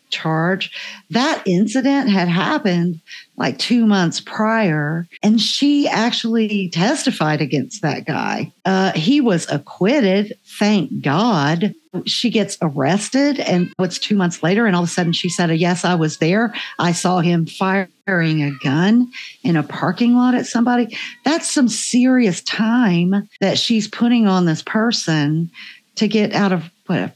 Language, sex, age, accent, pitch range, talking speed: English, female, 50-69, American, 170-220 Hz, 150 wpm